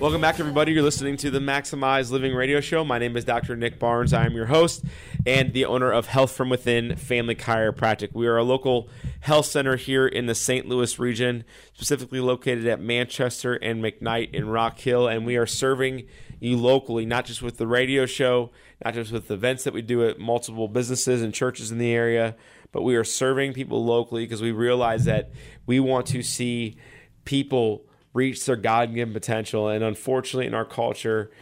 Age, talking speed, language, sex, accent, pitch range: 30-49, 195 wpm, English, male, American, 115-130 Hz